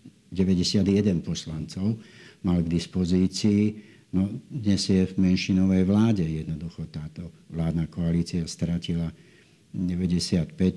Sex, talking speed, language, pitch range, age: male, 95 wpm, Slovak, 85-95 Hz, 60-79